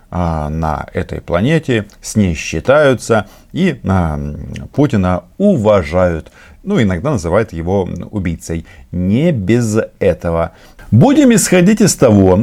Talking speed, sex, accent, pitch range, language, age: 105 wpm, male, native, 90-120 Hz, Russian, 50-69